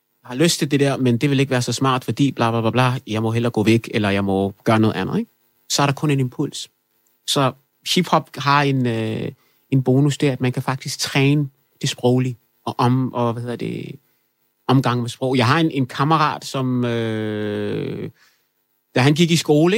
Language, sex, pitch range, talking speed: Danish, male, 120-145 Hz, 210 wpm